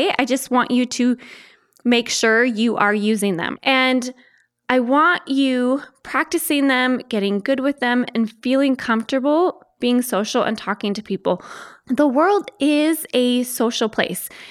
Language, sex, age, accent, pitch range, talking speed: English, female, 20-39, American, 210-275 Hz, 150 wpm